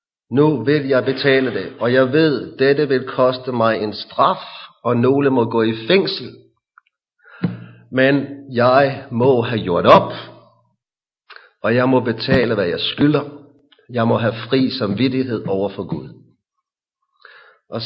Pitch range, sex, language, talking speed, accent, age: 115-145 Hz, male, English, 140 wpm, Danish, 40-59